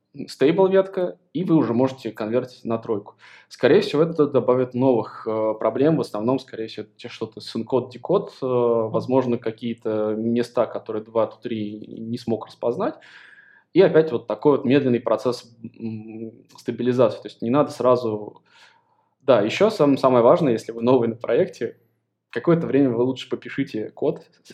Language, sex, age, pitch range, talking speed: Russian, male, 20-39, 110-130 Hz, 150 wpm